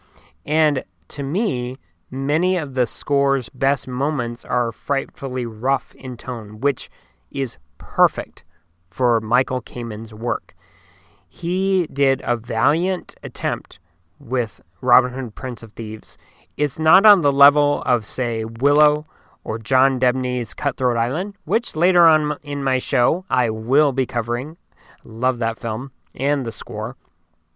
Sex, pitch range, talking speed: male, 120-150 Hz, 135 wpm